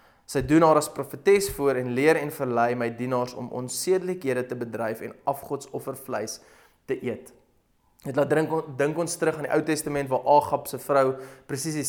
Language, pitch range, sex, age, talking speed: English, 125-155 Hz, male, 20-39, 185 wpm